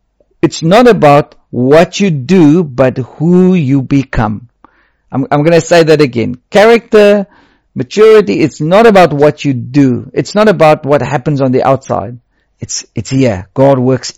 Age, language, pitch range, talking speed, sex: 50-69, English, 135-180 Hz, 160 wpm, male